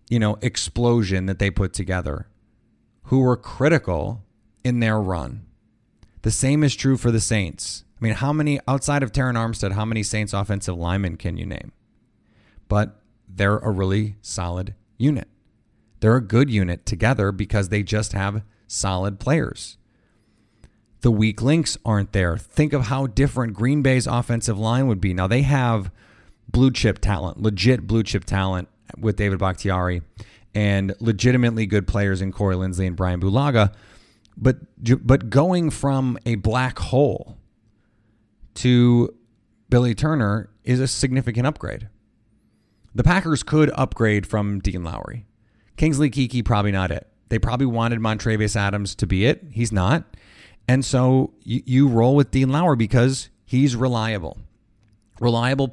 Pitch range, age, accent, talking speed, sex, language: 100-125 Hz, 30-49, American, 150 wpm, male, English